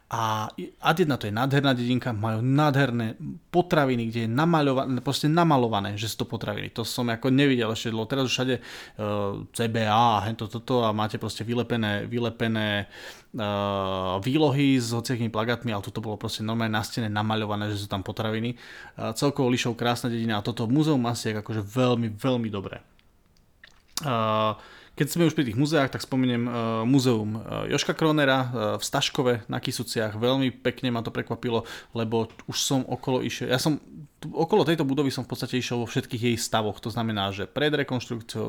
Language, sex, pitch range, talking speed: Slovak, male, 110-130 Hz, 180 wpm